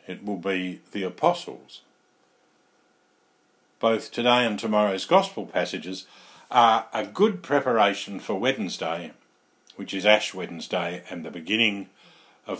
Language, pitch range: English, 100-145 Hz